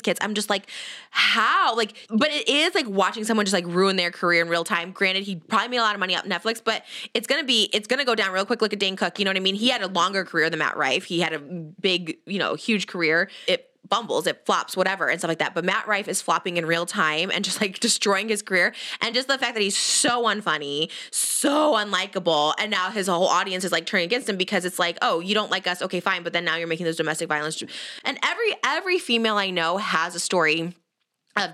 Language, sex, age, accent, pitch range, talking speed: English, female, 20-39, American, 180-220 Hz, 260 wpm